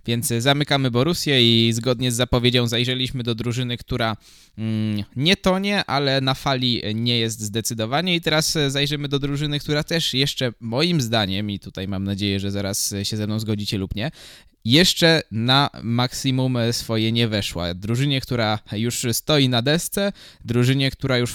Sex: male